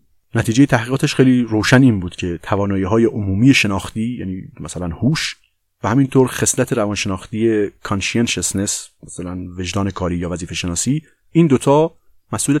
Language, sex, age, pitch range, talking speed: Persian, male, 30-49, 90-115 Hz, 140 wpm